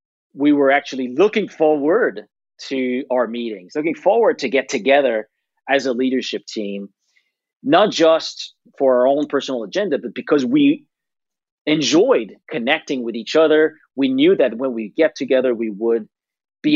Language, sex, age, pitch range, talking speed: English, male, 40-59, 125-180 Hz, 150 wpm